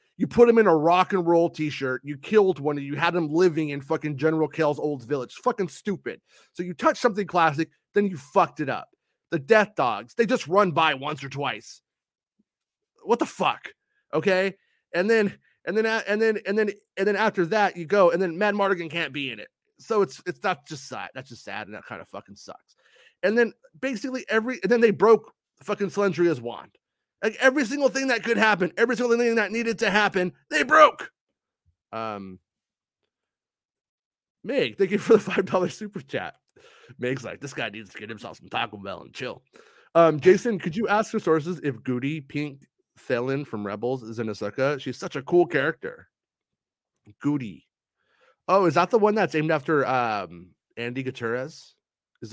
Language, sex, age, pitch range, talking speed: English, male, 30-49, 135-210 Hz, 195 wpm